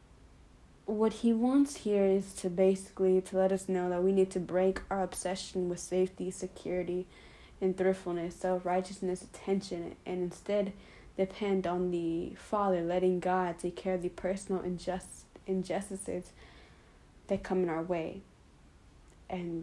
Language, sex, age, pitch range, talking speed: English, female, 10-29, 180-195 Hz, 140 wpm